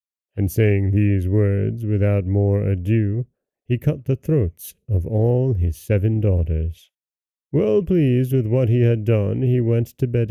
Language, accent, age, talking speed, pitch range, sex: English, American, 30-49, 155 wpm, 100-120 Hz, male